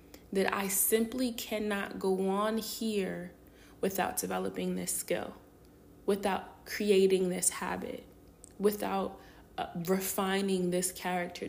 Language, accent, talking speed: English, American, 105 wpm